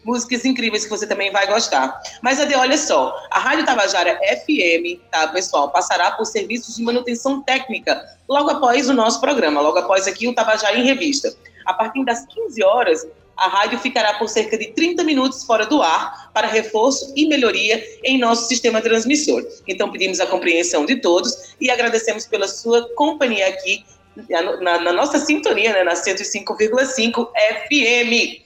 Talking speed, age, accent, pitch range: 165 wpm, 20-39, Brazilian, 205-280 Hz